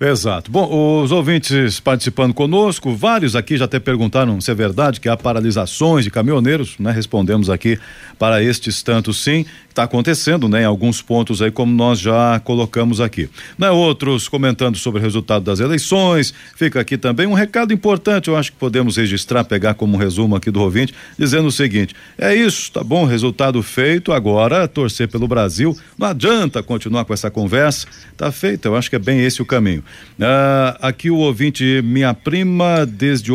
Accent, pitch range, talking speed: Brazilian, 115-145 Hz, 180 wpm